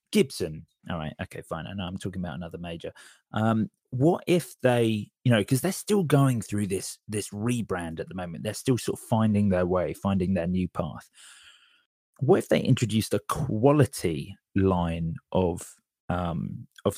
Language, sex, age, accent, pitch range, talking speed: English, male, 30-49, British, 95-140 Hz, 175 wpm